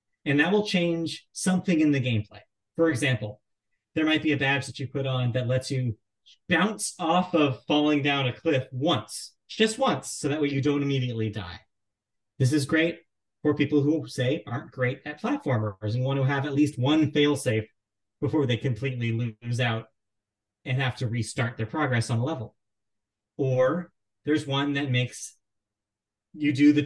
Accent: American